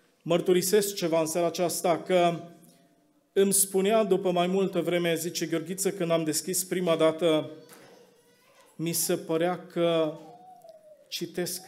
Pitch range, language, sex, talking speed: 160-185 Hz, Romanian, male, 125 wpm